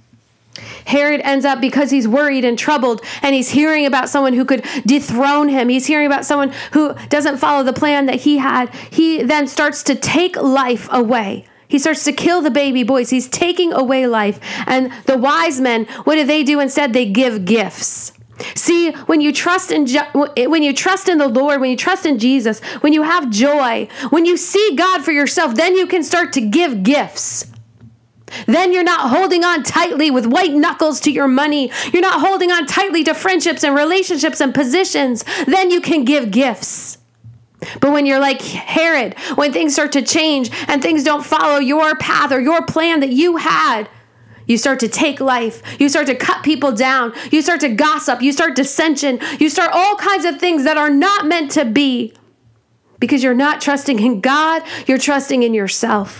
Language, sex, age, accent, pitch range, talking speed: English, female, 40-59, American, 250-315 Hz, 195 wpm